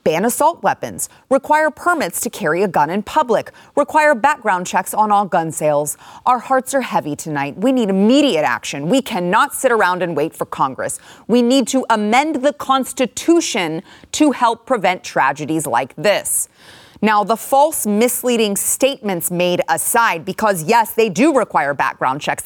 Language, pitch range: English, 195-275 Hz